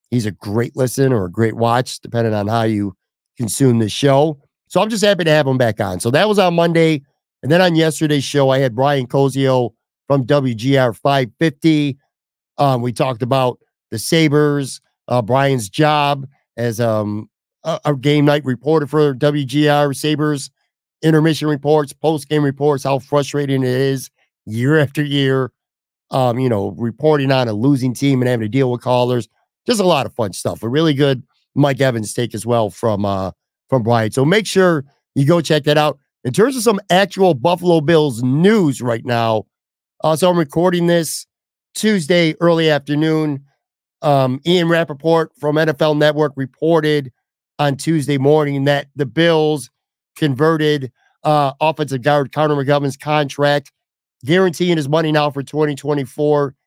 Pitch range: 130-155 Hz